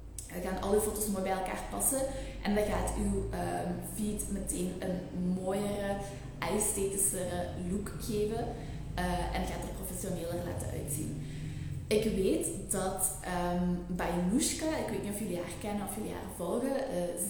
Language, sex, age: Dutch, female, 20-39